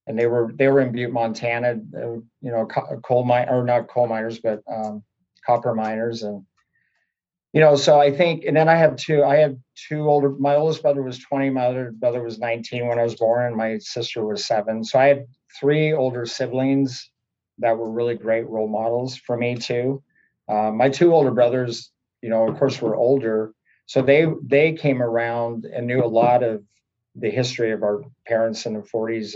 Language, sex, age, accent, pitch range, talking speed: English, male, 50-69, American, 115-140 Hz, 200 wpm